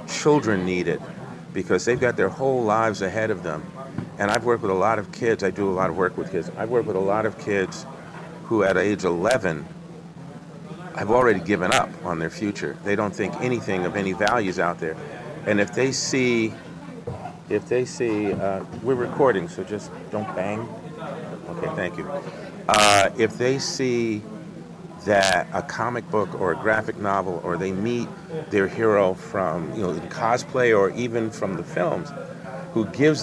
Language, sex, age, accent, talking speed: English, male, 50-69, American, 180 wpm